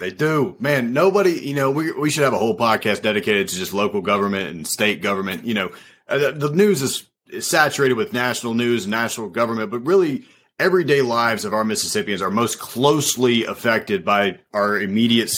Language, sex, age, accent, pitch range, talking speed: English, male, 30-49, American, 110-145 Hz, 185 wpm